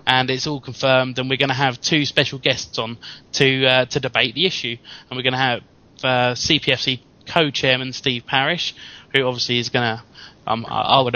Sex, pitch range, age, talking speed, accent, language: male, 125-140 Hz, 20-39, 200 wpm, British, English